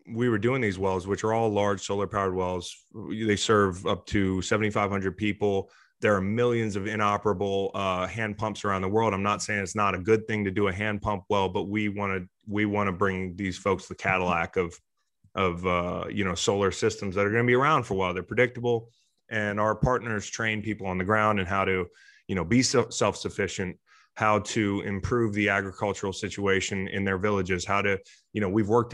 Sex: male